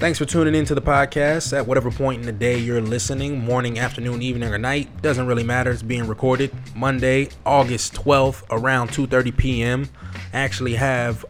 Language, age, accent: English, 20-39, American